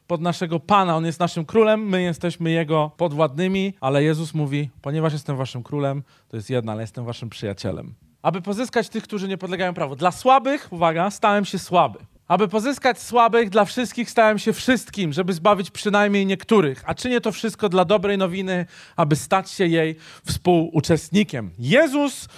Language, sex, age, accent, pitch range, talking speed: Polish, male, 40-59, native, 175-230 Hz, 170 wpm